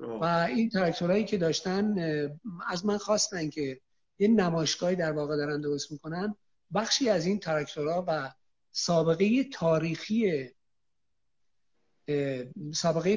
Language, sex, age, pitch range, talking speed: Persian, male, 50-69, 150-190 Hz, 110 wpm